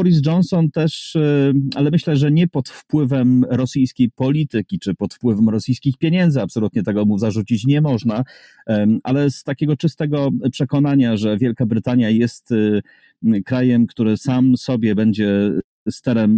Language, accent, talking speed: Polish, native, 135 wpm